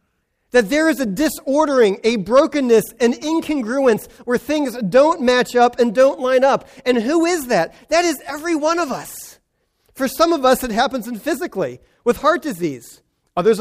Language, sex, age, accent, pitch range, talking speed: English, male, 40-59, American, 210-265 Hz, 170 wpm